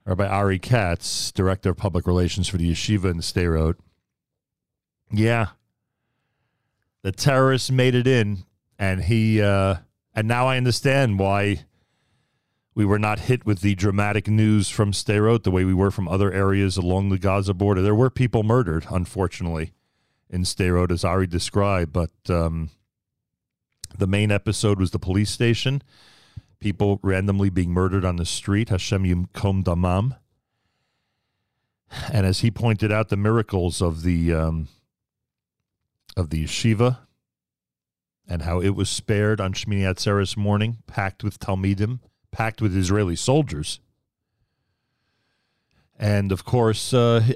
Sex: male